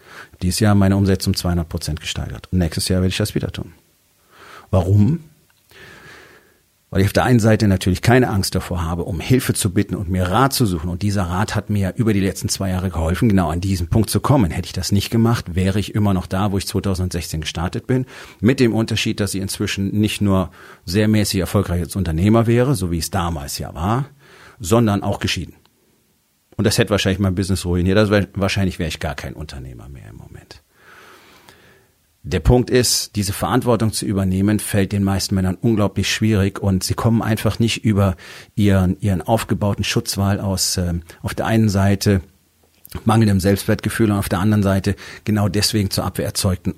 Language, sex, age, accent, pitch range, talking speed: German, male, 40-59, German, 95-110 Hz, 190 wpm